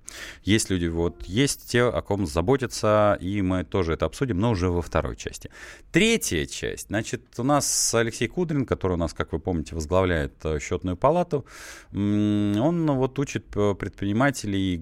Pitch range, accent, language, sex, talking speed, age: 85-110 Hz, native, Russian, male, 155 wpm, 30-49